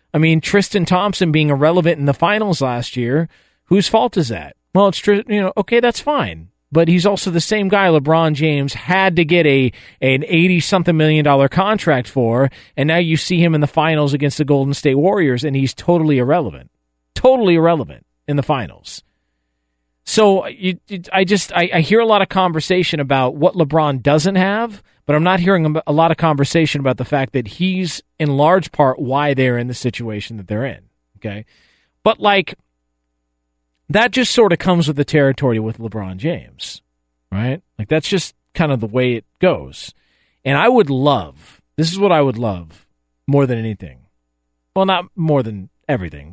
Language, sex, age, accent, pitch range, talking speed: English, male, 40-59, American, 120-180 Hz, 190 wpm